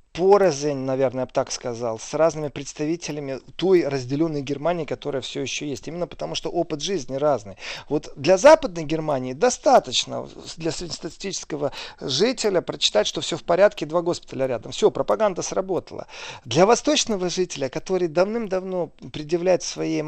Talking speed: 145 wpm